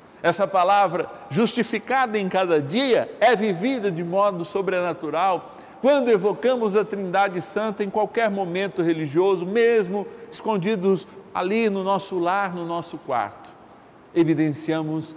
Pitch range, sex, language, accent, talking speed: 135-195 Hz, male, Portuguese, Brazilian, 120 wpm